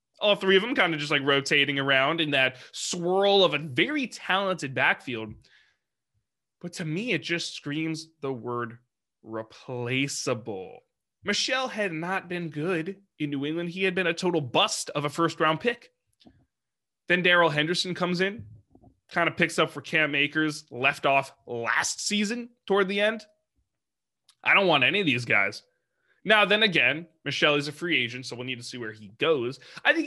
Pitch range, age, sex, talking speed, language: 135-190 Hz, 20-39, male, 180 wpm, English